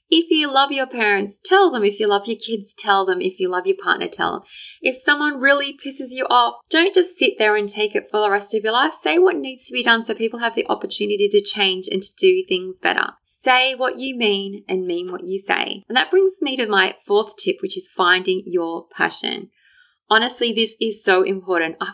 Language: English